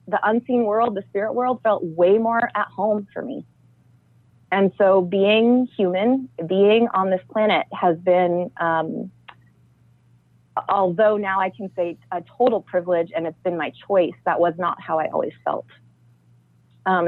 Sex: female